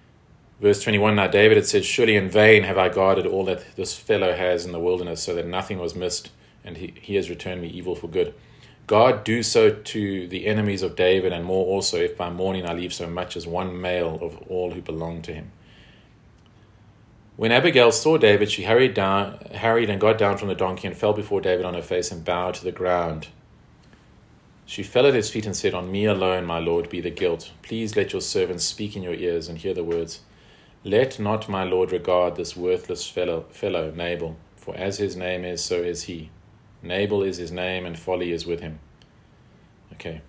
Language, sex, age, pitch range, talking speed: English, male, 30-49, 90-110 Hz, 210 wpm